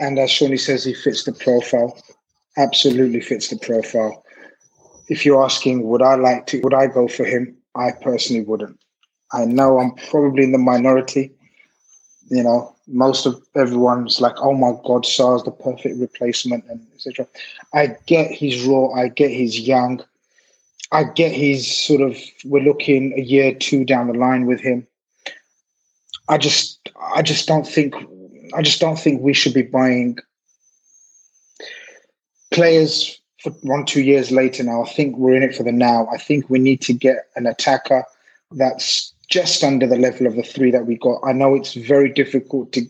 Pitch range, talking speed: 125-140 Hz, 180 wpm